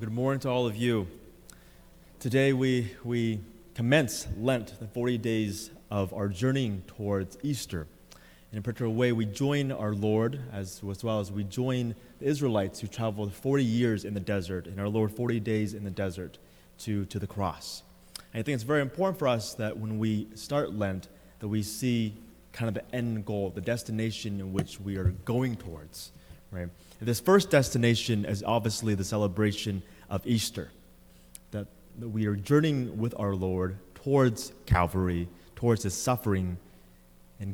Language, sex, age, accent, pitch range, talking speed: English, male, 30-49, American, 95-120 Hz, 170 wpm